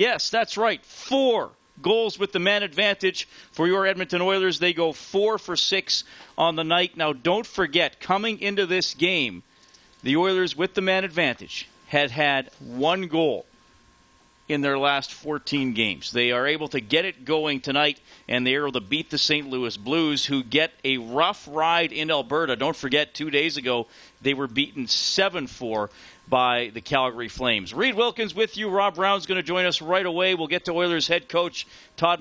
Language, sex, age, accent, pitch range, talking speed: English, male, 40-59, American, 130-175 Hz, 185 wpm